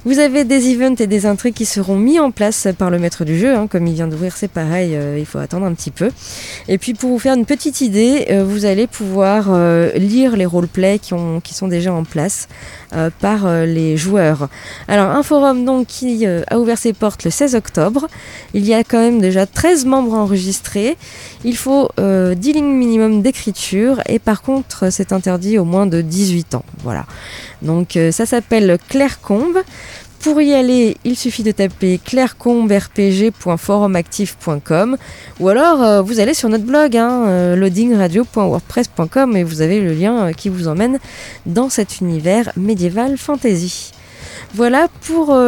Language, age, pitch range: French, 20-39, 180-245 Hz